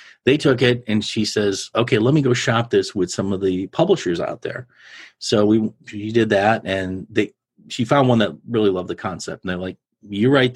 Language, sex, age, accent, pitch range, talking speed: English, male, 40-59, American, 95-120 Hz, 220 wpm